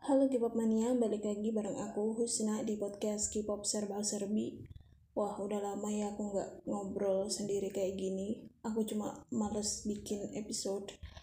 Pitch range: 205-235 Hz